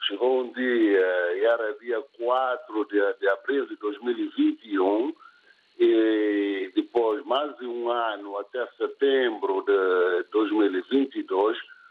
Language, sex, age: Portuguese, male, 50-69